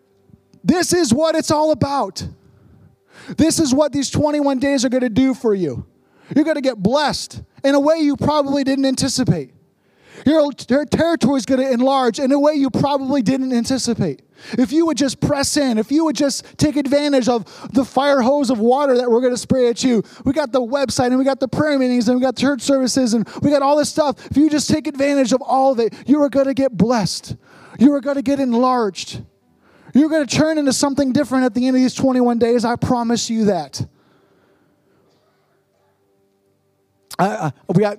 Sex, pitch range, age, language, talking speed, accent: male, 180-275 Hz, 20-39, English, 205 wpm, American